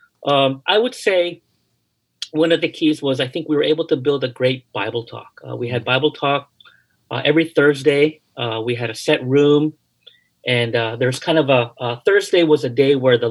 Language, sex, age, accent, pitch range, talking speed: English, male, 40-59, American, 120-150 Hz, 210 wpm